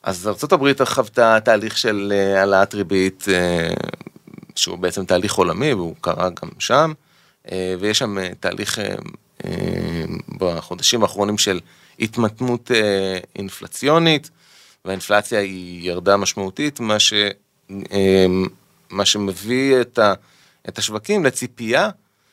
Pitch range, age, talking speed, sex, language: 95-115 Hz, 30-49, 95 wpm, male, Hebrew